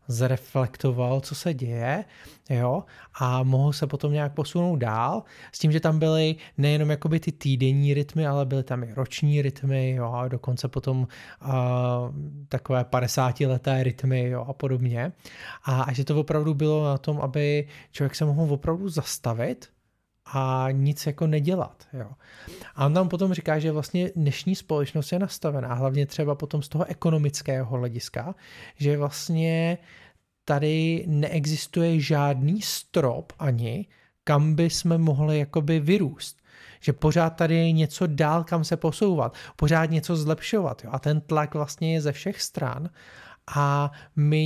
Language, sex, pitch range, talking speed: Czech, male, 135-160 Hz, 145 wpm